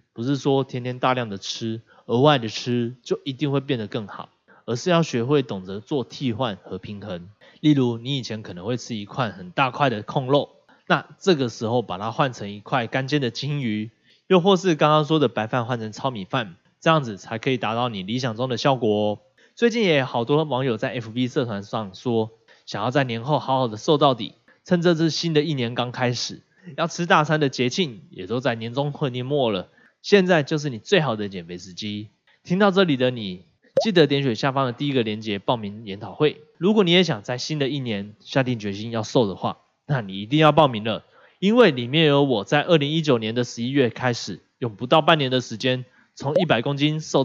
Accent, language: native, Chinese